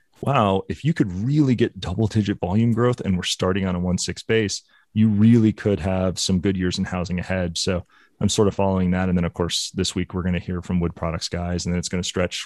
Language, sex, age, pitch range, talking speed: English, male, 30-49, 90-105 Hz, 255 wpm